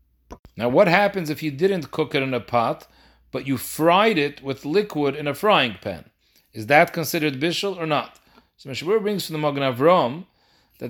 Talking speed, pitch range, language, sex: 195 wpm, 130-165 Hz, English, male